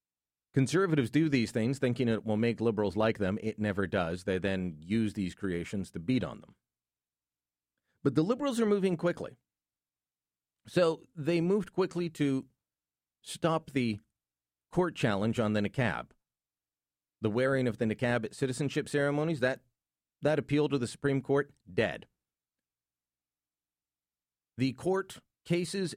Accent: American